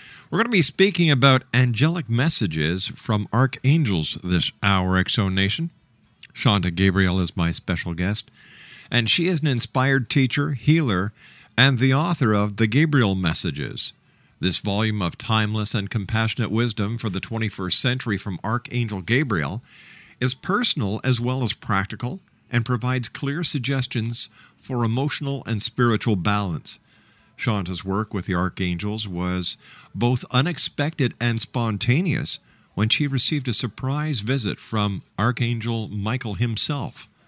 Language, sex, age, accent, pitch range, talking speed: English, male, 50-69, American, 100-130 Hz, 135 wpm